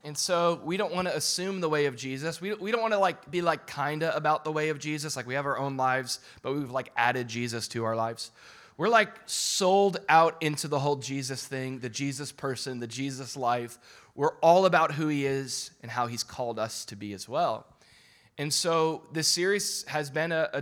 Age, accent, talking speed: 20-39, American, 220 wpm